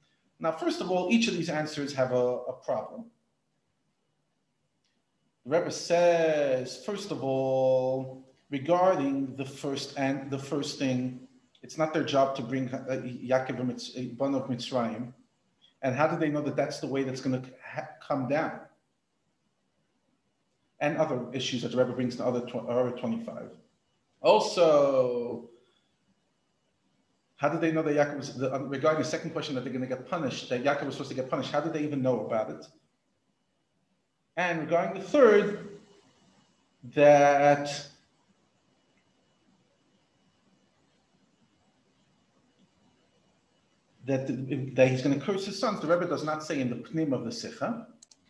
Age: 40-59